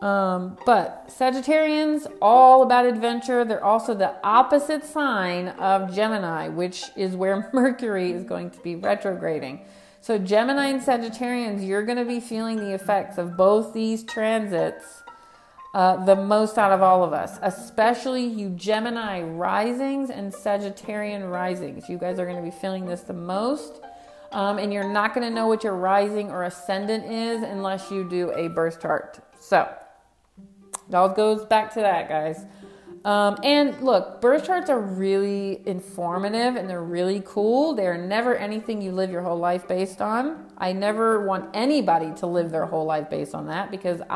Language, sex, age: English, female, 40-59